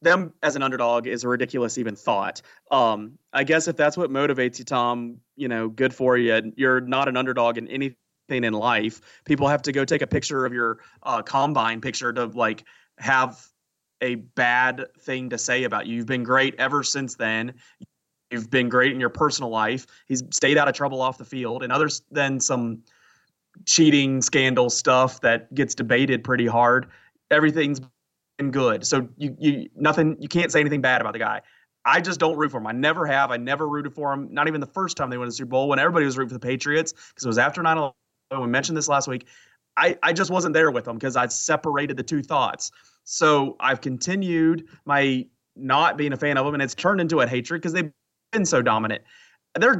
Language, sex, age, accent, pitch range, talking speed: English, male, 30-49, American, 125-150 Hz, 215 wpm